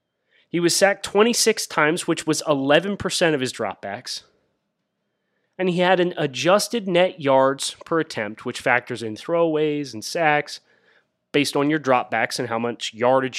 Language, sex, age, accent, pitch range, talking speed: English, male, 30-49, American, 130-190 Hz, 150 wpm